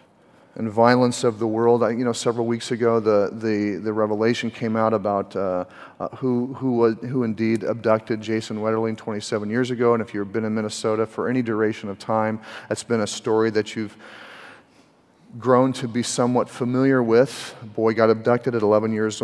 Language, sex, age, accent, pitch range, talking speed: English, male, 40-59, American, 105-120 Hz, 180 wpm